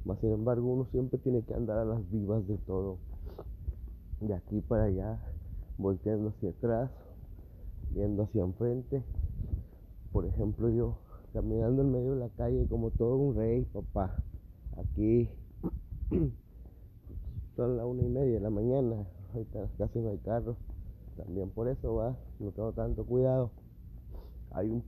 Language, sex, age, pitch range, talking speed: Spanish, male, 30-49, 90-115 Hz, 145 wpm